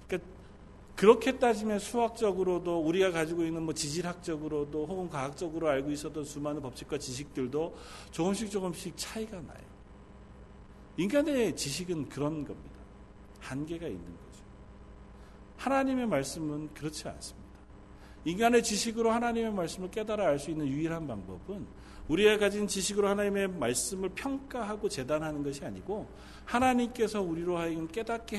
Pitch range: 130-190 Hz